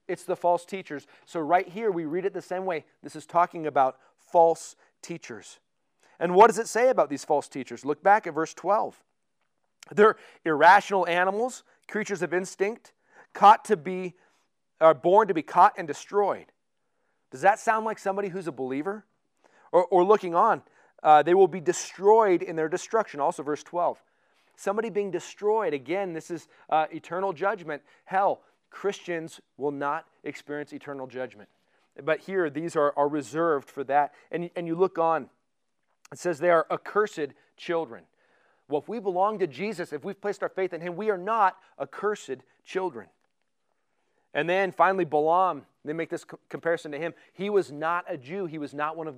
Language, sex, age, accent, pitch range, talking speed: English, male, 40-59, American, 155-195 Hz, 175 wpm